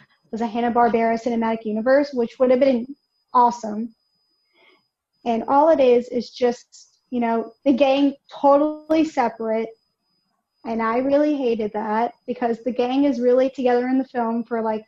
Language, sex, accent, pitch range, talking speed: English, female, American, 225-260 Hz, 155 wpm